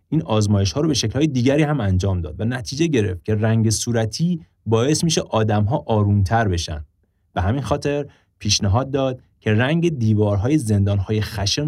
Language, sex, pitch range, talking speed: English, male, 95-125 Hz, 180 wpm